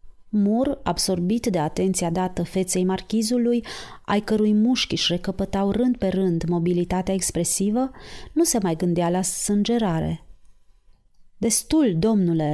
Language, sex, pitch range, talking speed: Romanian, female, 175-215 Hz, 115 wpm